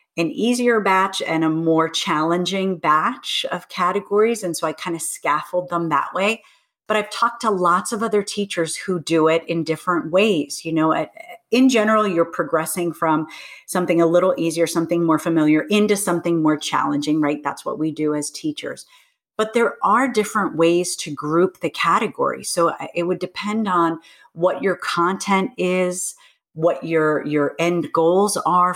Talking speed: 170 wpm